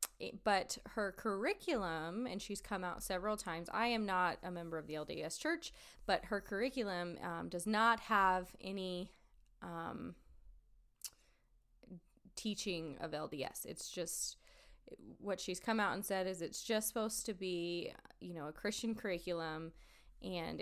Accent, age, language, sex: American, 20-39, English, female